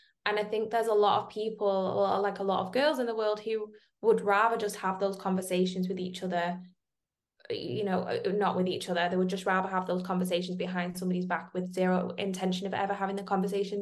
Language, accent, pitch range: English, British, 185-215 Hz